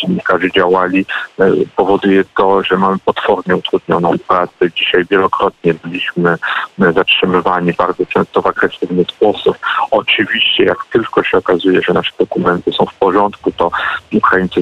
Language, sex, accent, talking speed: Polish, male, native, 125 wpm